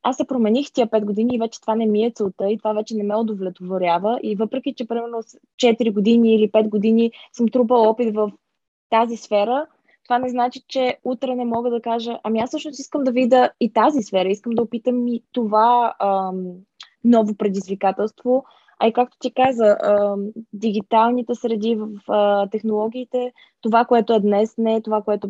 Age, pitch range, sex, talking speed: 20-39, 200-235 Hz, female, 185 wpm